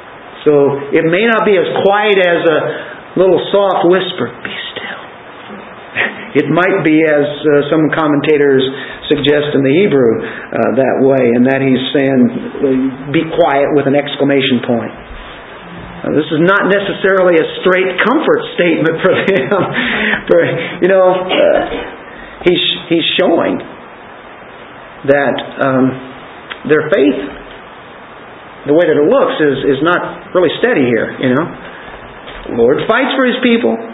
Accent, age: American, 50-69